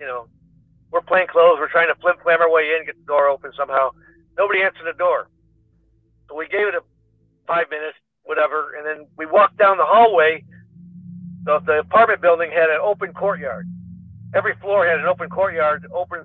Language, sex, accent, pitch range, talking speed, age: English, male, American, 155-195 Hz, 190 wpm, 50-69